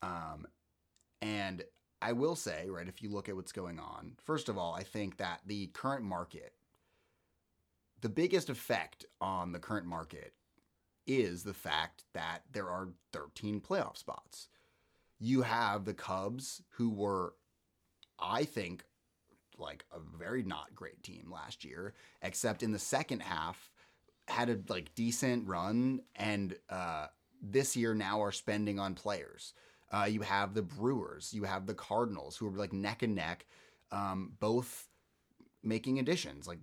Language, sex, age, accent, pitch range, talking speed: English, male, 30-49, American, 100-120 Hz, 150 wpm